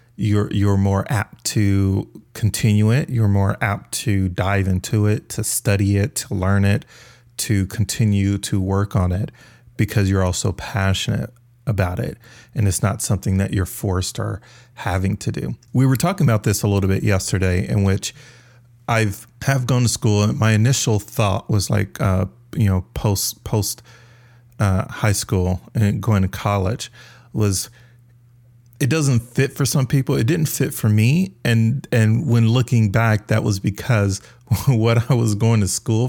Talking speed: 175 wpm